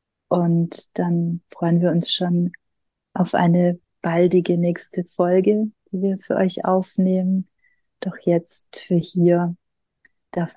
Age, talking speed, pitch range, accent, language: 30-49, 120 wpm, 165-175 Hz, German, German